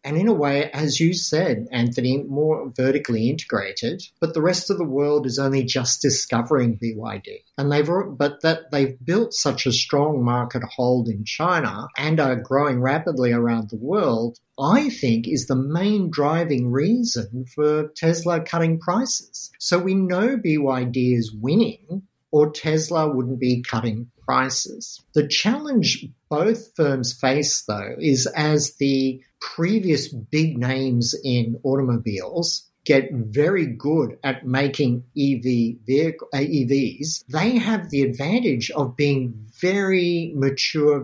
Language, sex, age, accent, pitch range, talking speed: English, male, 50-69, Australian, 125-160 Hz, 140 wpm